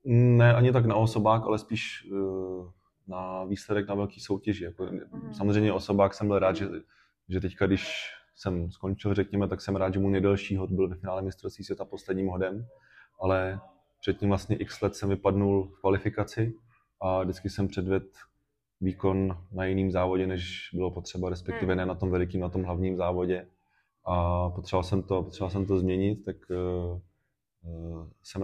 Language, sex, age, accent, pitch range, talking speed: Czech, male, 20-39, native, 90-100 Hz, 160 wpm